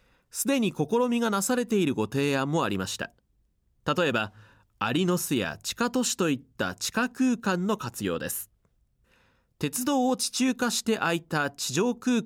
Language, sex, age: Japanese, male, 30-49